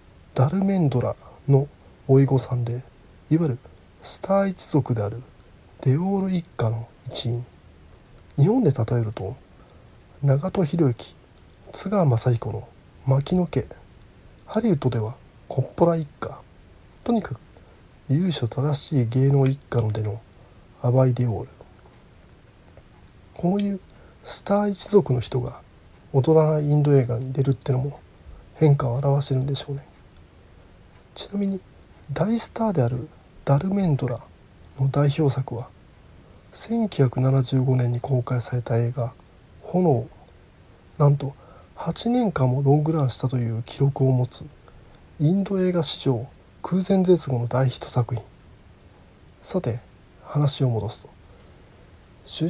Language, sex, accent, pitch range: Japanese, male, native, 115-150 Hz